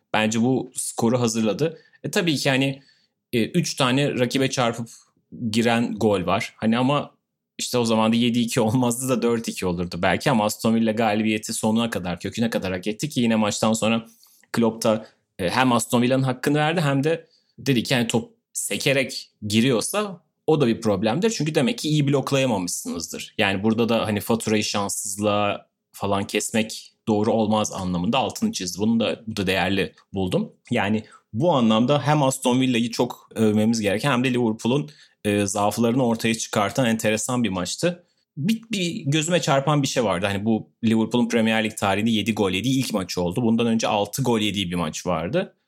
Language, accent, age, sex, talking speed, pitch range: Turkish, native, 30-49, male, 170 wpm, 110-135 Hz